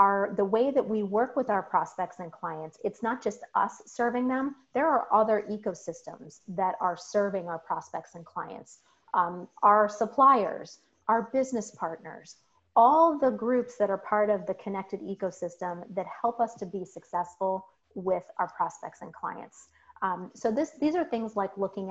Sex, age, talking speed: female, 30-49, 165 wpm